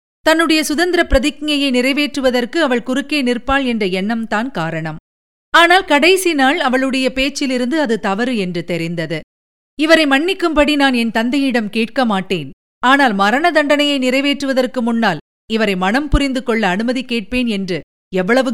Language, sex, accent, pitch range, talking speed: Tamil, female, native, 225-295 Hz, 125 wpm